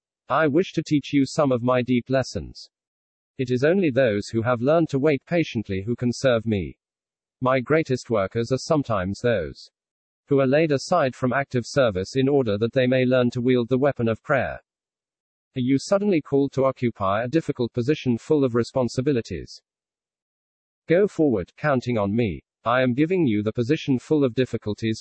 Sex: male